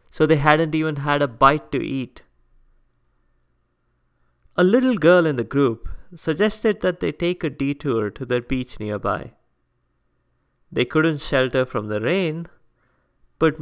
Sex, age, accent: male, 20-39, Indian